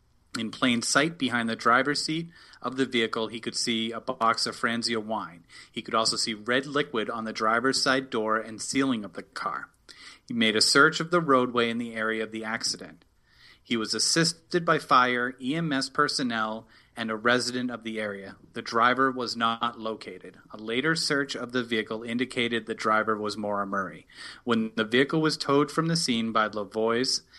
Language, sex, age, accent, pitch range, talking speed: English, male, 30-49, American, 110-135 Hz, 190 wpm